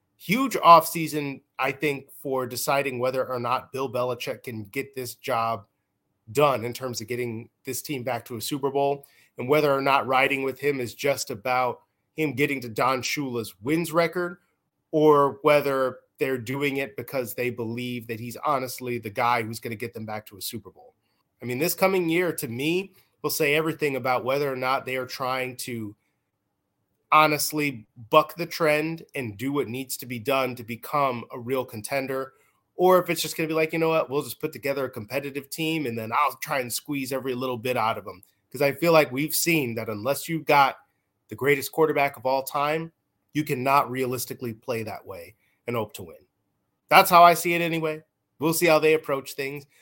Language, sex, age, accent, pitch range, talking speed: English, male, 30-49, American, 125-155 Hz, 200 wpm